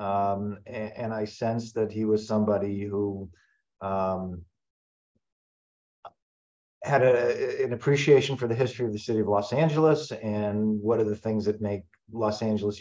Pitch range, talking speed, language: 105-125 Hz, 160 wpm, English